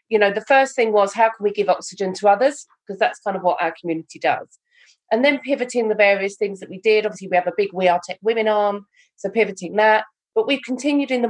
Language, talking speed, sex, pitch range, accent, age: English, 255 wpm, female, 185-240 Hz, British, 40-59